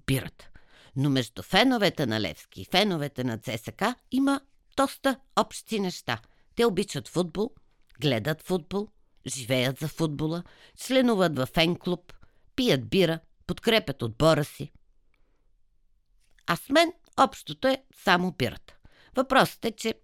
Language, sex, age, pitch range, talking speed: Bulgarian, female, 50-69, 130-195 Hz, 125 wpm